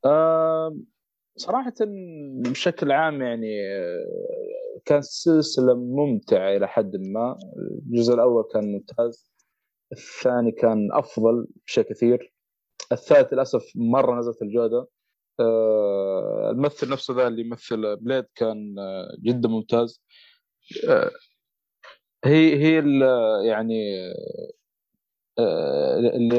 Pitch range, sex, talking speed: 110-160 Hz, male, 90 wpm